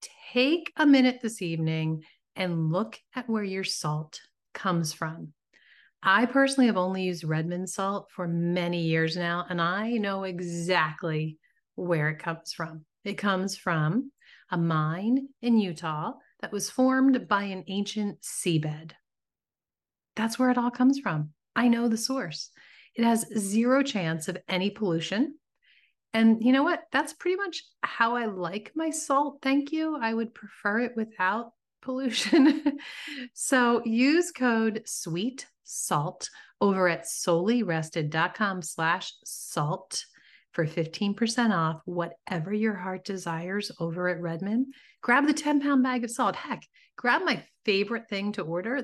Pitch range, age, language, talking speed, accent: 170-245 Hz, 30-49, English, 145 wpm, American